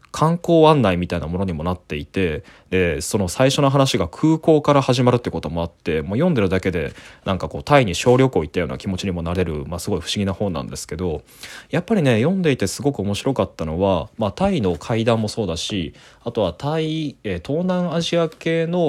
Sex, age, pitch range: male, 20-39, 90-135 Hz